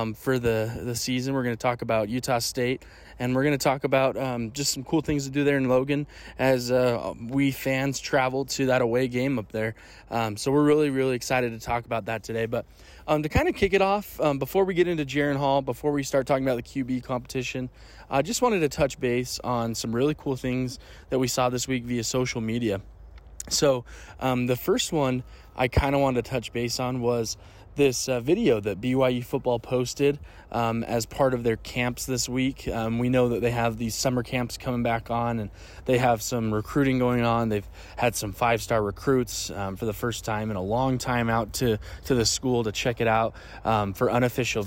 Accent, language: American, English